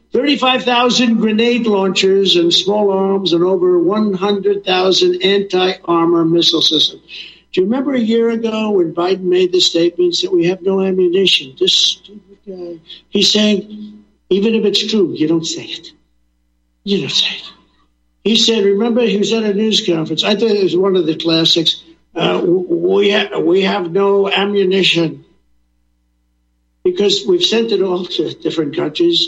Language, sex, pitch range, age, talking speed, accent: English, male, 170-225 Hz, 60-79, 165 wpm, American